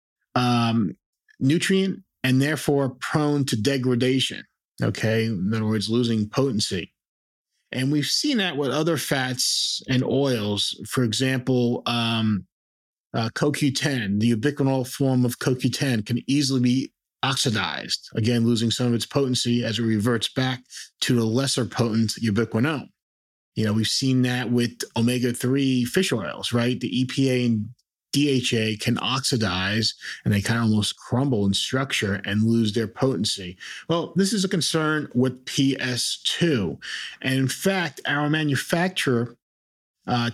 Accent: American